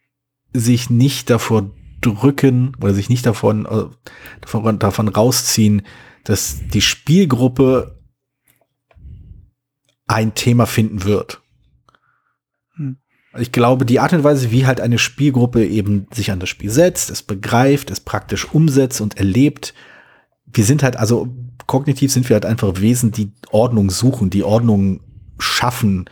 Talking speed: 135 wpm